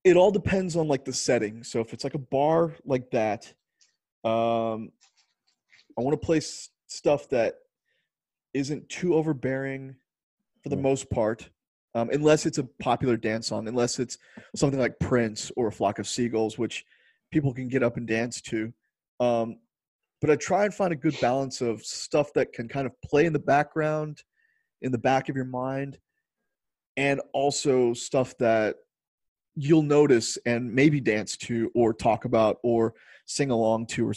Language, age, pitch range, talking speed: English, 30-49, 115-150 Hz, 170 wpm